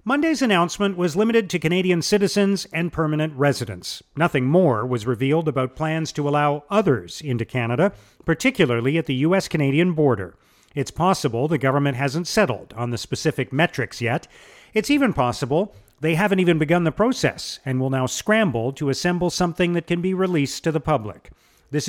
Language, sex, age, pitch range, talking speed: English, male, 40-59, 135-185 Hz, 165 wpm